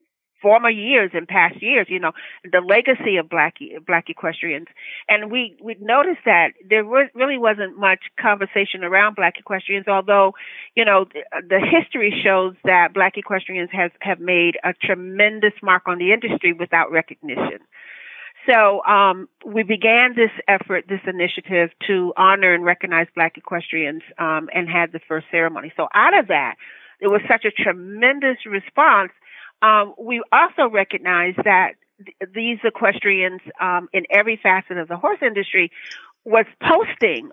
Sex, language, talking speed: female, English, 155 wpm